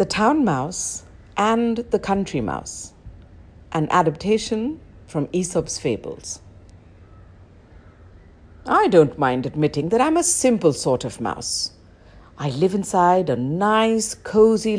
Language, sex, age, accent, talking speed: English, female, 60-79, Indian, 120 wpm